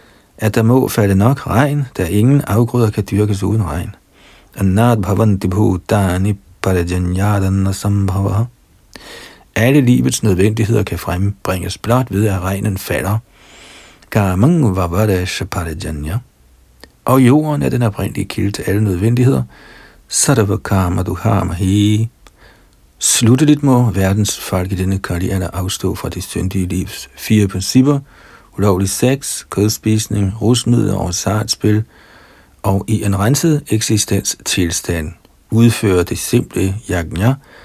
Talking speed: 105 wpm